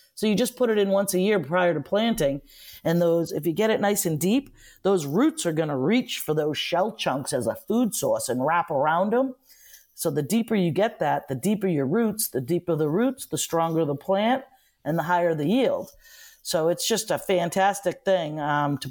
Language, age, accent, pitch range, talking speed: English, 40-59, American, 160-210 Hz, 220 wpm